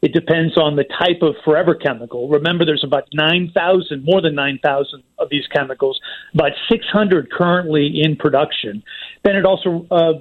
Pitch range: 150-185 Hz